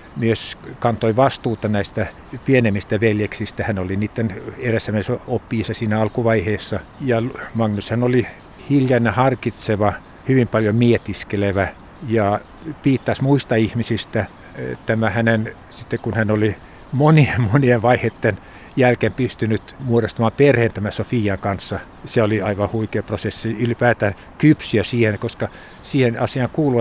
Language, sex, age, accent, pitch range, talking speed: Finnish, male, 60-79, native, 105-125 Hz, 120 wpm